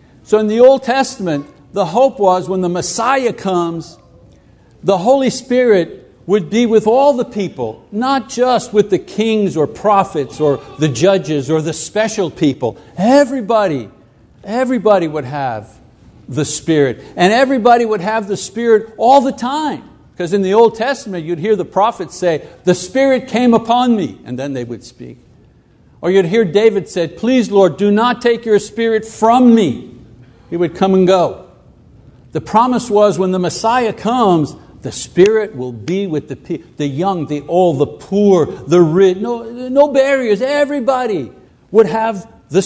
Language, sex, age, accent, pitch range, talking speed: English, male, 60-79, American, 170-230 Hz, 165 wpm